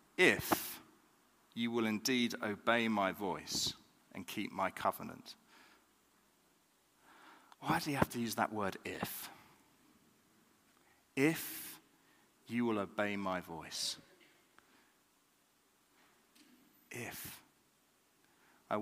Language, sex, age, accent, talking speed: English, male, 40-59, British, 90 wpm